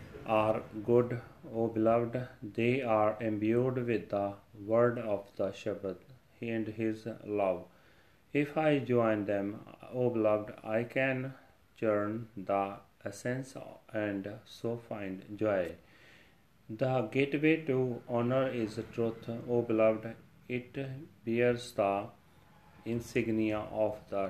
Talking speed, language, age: 115 wpm, Punjabi, 30-49